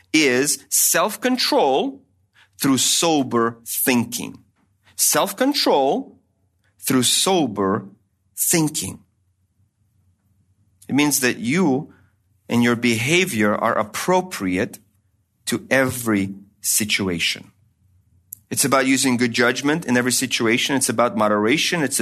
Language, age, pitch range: English, 40-59, 100-130 Hz